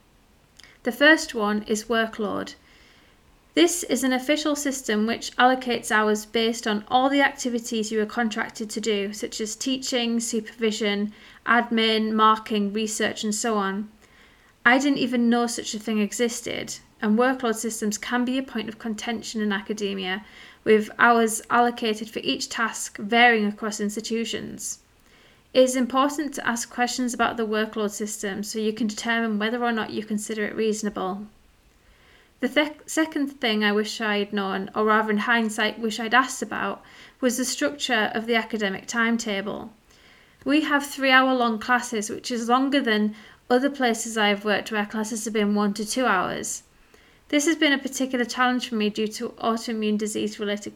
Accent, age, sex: British, 30-49, female